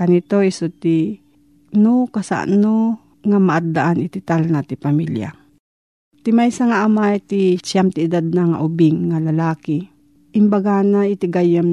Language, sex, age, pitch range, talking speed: Filipino, female, 40-59, 170-225 Hz, 145 wpm